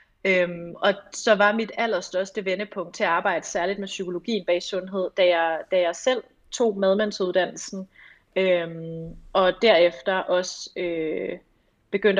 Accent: native